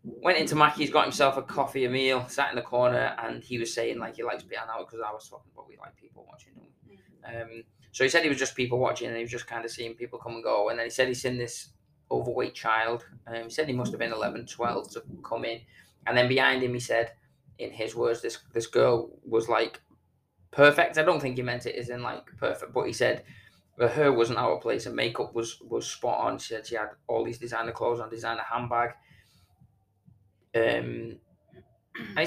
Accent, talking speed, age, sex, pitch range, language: British, 235 wpm, 20-39, male, 115-125 Hz, English